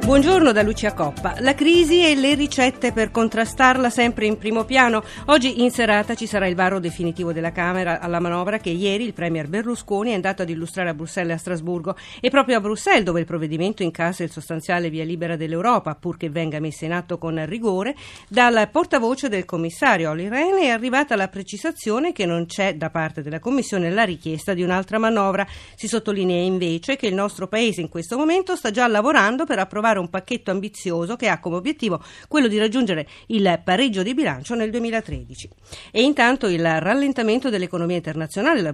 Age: 50-69